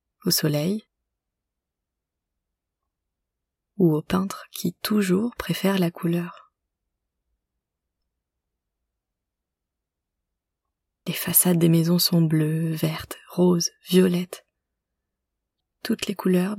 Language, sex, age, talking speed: French, female, 30-49, 80 wpm